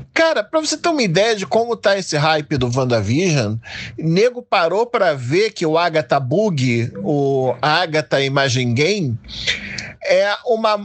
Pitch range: 160-230 Hz